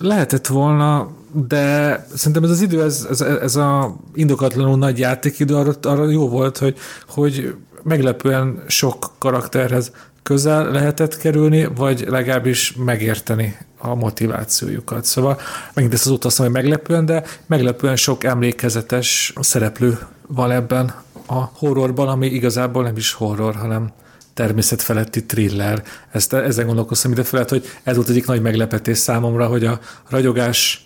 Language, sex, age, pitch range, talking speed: Hungarian, male, 40-59, 115-135 Hz, 135 wpm